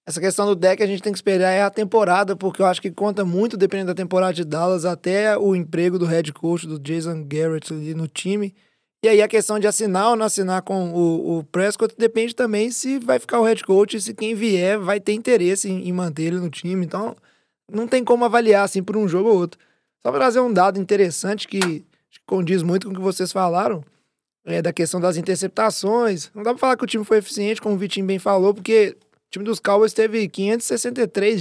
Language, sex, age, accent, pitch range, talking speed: Portuguese, male, 20-39, Brazilian, 180-220 Hz, 230 wpm